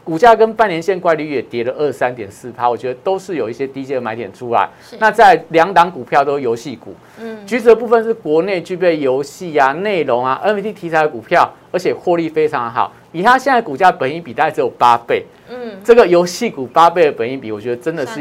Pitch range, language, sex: 135-205 Hz, Chinese, male